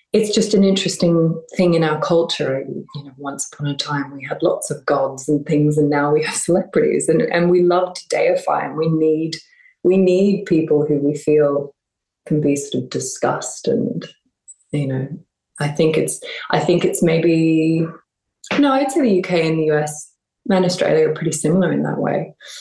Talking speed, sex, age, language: 195 wpm, female, 20-39, English